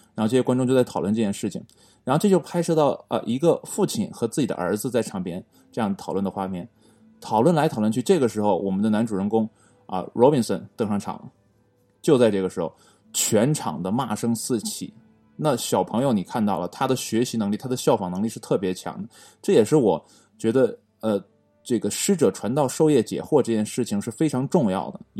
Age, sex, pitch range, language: 20-39, male, 100-130 Hz, Chinese